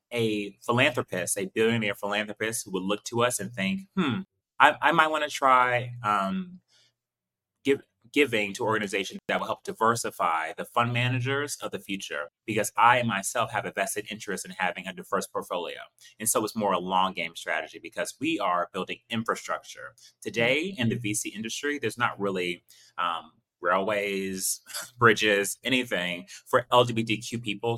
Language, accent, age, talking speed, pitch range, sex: English, American, 30-49, 150 wpm, 100-125 Hz, male